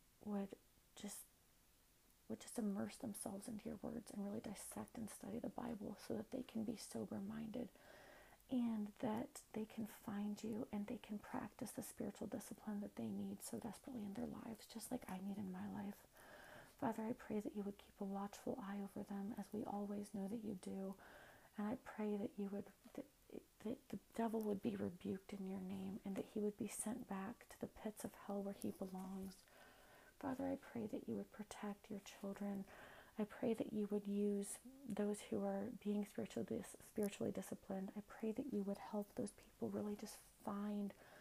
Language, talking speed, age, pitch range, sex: English, 195 wpm, 40-59, 200-230 Hz, female